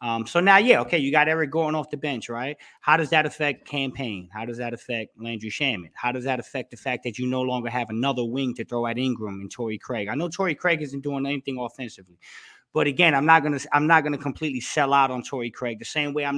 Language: English